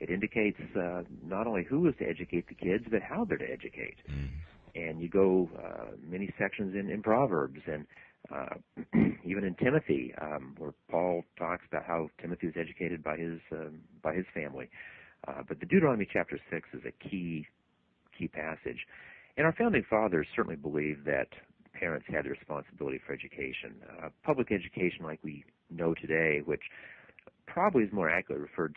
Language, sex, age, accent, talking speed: English, male, 50-69, American, 170 wpm